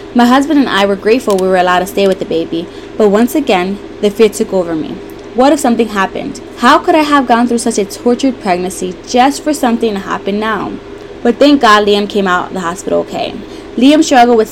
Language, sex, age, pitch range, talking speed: English, female, 20-39, 190-245 Hz, 225 wpm